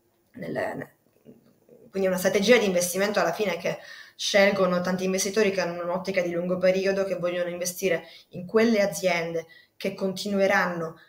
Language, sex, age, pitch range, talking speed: Italian, female, 20-39, 170-195 Hz, 140 wpm